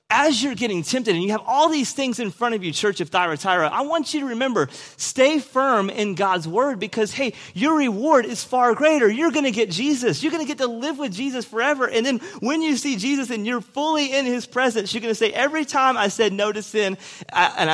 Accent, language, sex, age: American, English, male, 30-49